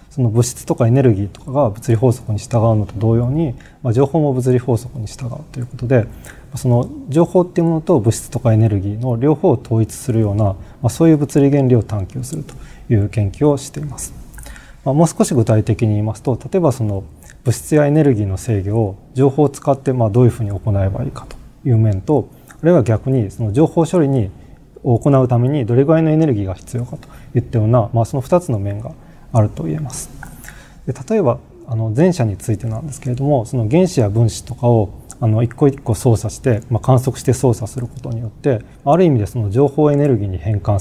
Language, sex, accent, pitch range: Japanese, male, native, 110-140 Hz